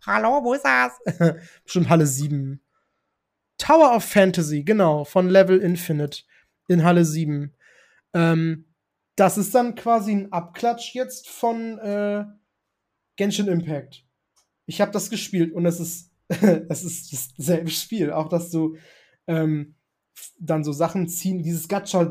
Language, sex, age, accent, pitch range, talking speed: German, male, 20-39, German, 160-195 Hz, 140 wpm